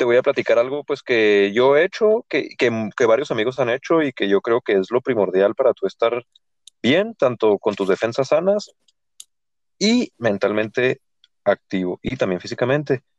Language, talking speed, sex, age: Spanish, 175 wpm, male, 30-49